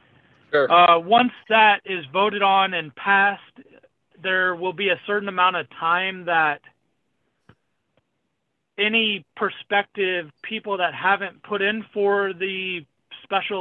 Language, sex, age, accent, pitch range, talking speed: English, male, 30-49, American, 160-195 Hz, 120 wpm